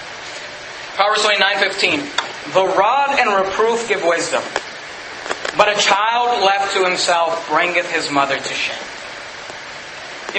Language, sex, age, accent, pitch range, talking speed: English, male, 30-49, American, 175-225 Hz, 115 wpm